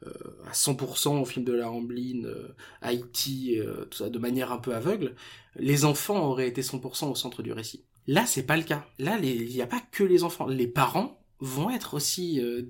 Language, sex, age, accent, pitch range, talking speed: French, male, 20-39, French, 125-175 Hz, 215 wpm